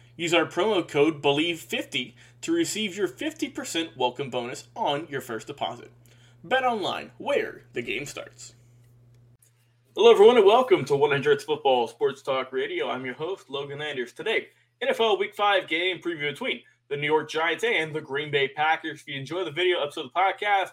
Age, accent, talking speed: 20-39, American, 175 wpm